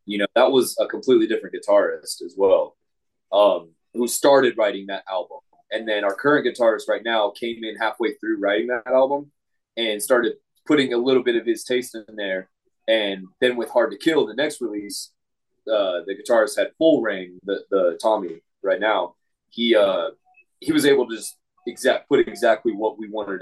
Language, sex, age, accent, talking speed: English, male, 20-39, American, 190 wpm